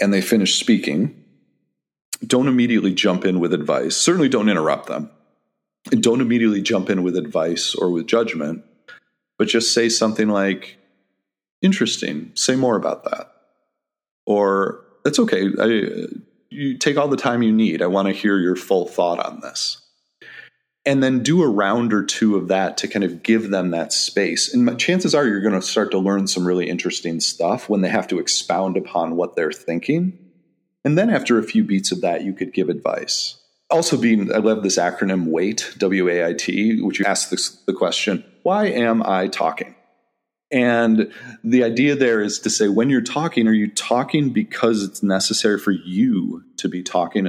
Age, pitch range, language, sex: 30-49, 95-130 Hz, English, male